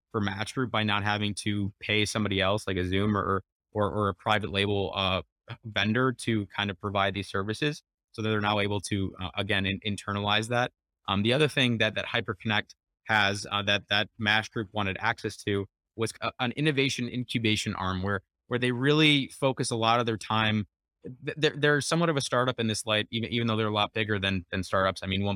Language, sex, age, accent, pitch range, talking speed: English, male, 20-39, American, 100-120 Hz, 215 wpm